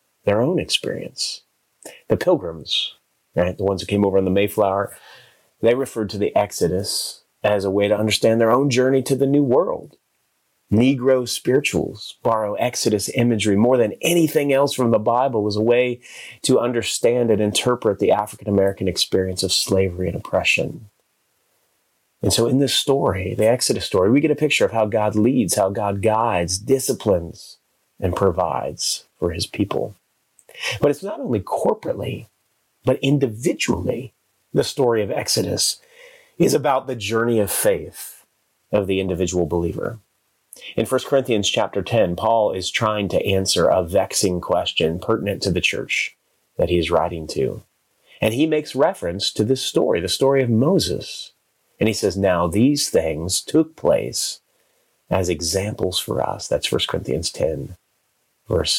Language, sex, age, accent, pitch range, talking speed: English, male, 30-49, American, 95-130 Hz, 155 wpm